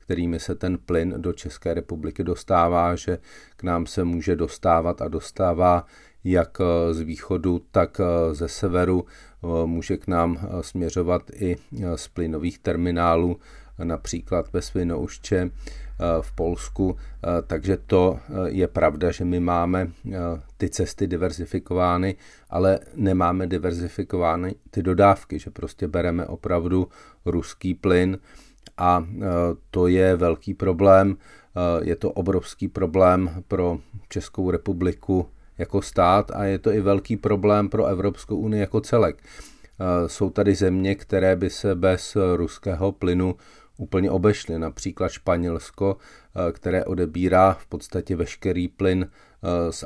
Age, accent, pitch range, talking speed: 40-59, native, 85-95 Hz, 120 wpm